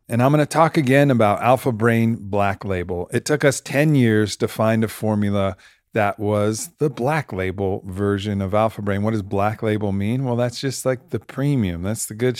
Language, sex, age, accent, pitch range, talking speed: English, male, 40-59, American, 100-125 Hz, 205 wpm